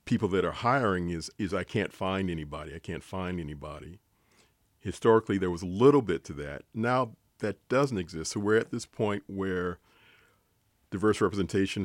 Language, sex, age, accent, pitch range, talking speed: English, male, 40-59, American, 90-110 Hz, 170 wpm